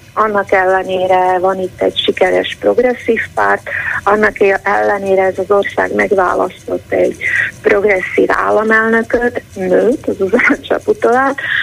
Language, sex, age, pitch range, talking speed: Hungarian, female, 30-49, 190-250 Hz, 105 wpm